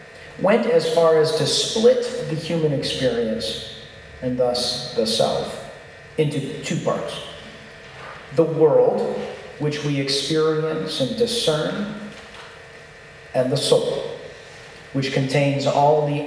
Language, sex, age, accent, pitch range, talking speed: English, male, 40-59, American, 135-170 Hz, 110 wpm